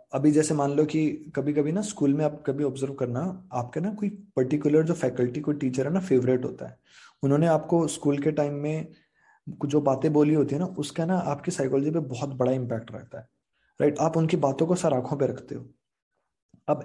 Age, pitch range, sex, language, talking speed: 20-39, 135-165 Hz, male, Hindi, 215 wpm